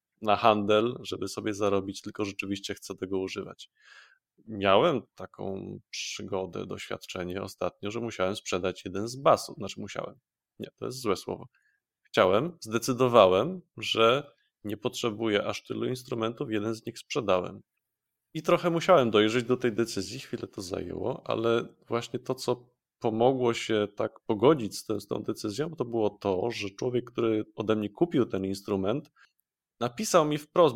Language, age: Polish, 20-39